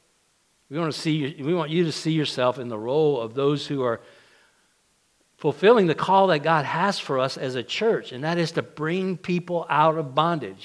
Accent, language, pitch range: American, English, 125-165 Hz